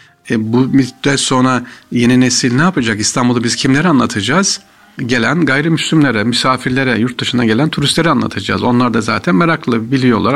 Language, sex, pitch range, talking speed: Turkish, male, 105-135 Hz, 145 wpm